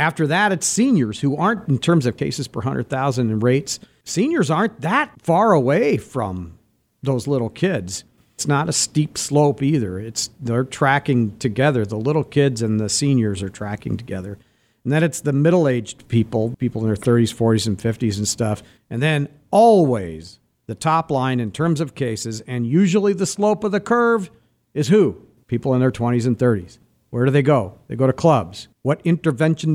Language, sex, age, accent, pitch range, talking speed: English, male, 50-69, American, 120-170 Hz, 185 wpm